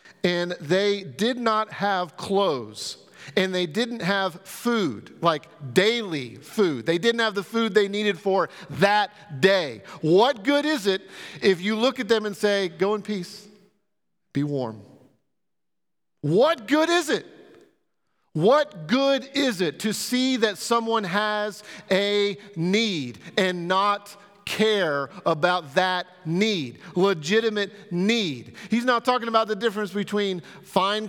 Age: 40-59